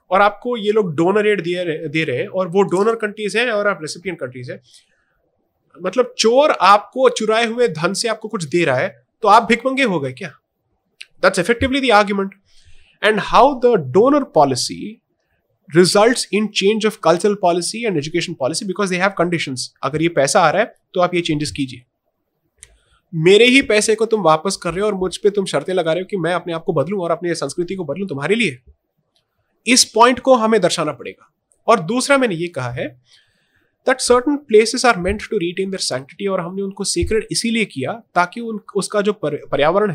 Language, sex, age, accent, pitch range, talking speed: Hindi, male, 30-49, native, 165-215 Hz, 145 wpm